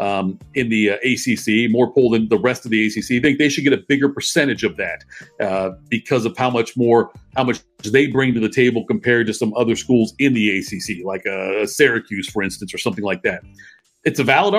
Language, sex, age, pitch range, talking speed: English, male, 50-69, 110-145 Hz, 230 wpm